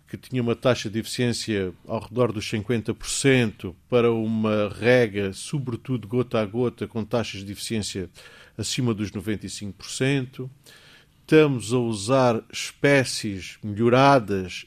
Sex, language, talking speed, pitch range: male, Portuguese, 120 wpm, 105-130 Hz